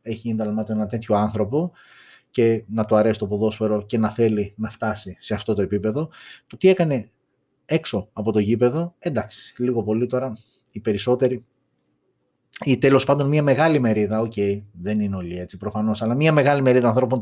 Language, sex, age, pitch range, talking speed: Greek, male, 30-49, 105-130 Hz, 175 wpm